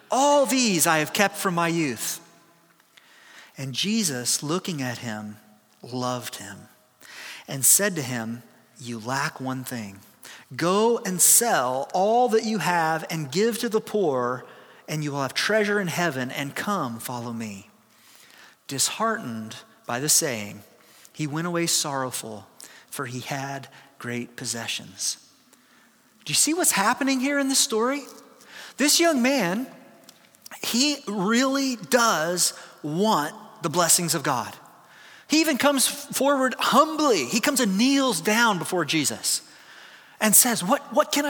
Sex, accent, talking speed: male, American, 140 wpm